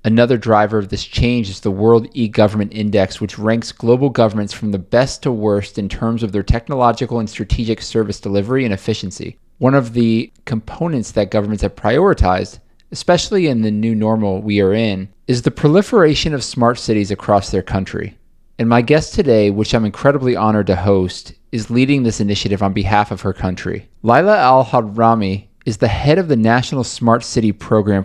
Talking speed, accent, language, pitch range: 180 wpm, American, English, 100-120 Hz